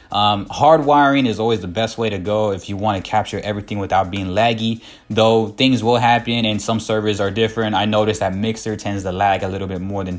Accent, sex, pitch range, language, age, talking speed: American, male, 100-115 Hz, English, 20-39, 230 wpm